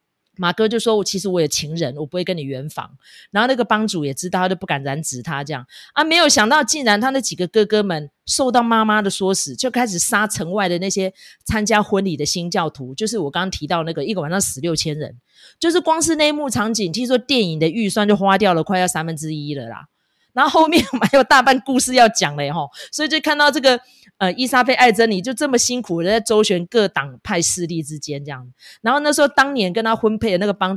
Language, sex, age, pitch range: Chinese, female, 30-49, 170-240 Hz